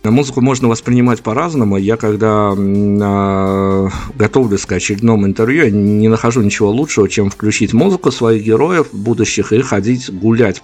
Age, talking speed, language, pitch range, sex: 50-69, 130 wpm, Russian, 100-115 Hz, male